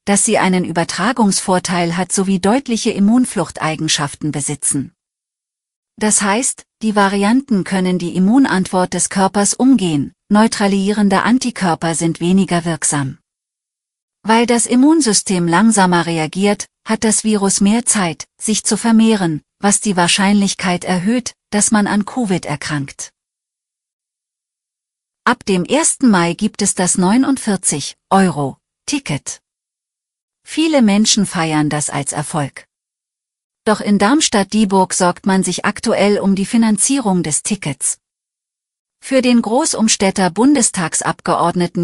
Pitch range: 170-220 Hz